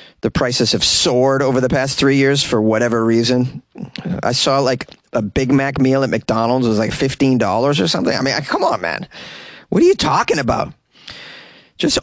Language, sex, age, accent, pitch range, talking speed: English, male, 30-49, American, 115-155 Hz, 185 wpm